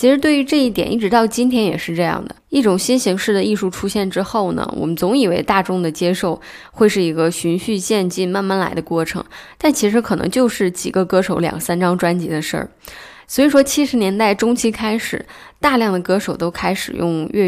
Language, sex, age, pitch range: Chinese, female, 20-39, 175-220 Hz